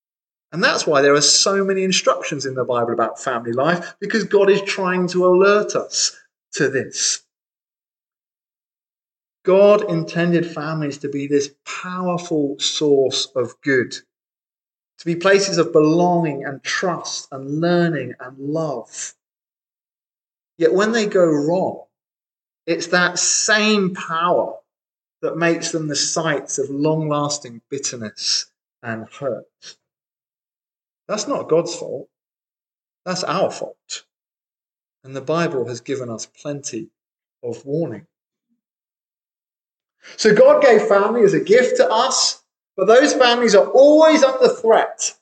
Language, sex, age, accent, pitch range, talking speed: English, male, 30-49, British, 145-205 Hz, 125 wpm